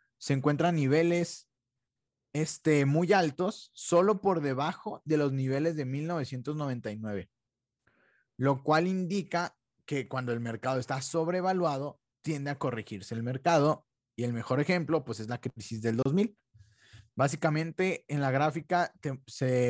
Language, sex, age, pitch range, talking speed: Spanish, male, 20-39, 125-160 Hz, 130 wpm